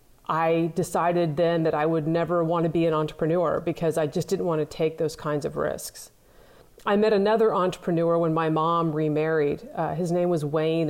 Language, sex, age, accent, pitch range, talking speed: English, female, 40-59, American, 160-185 Hz, 200 wpm